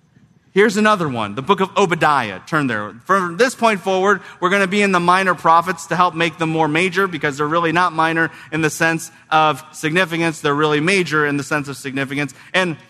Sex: male